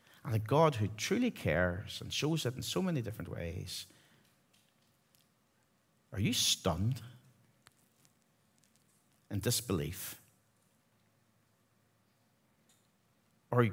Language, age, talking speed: English, 50-69, 85 wpm